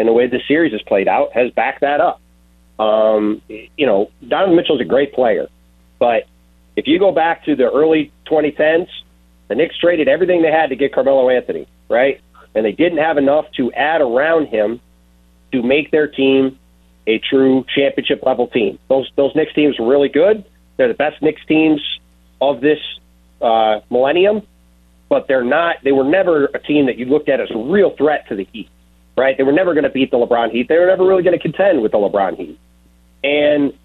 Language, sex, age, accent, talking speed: English, male, 40-59, American, 205 wpm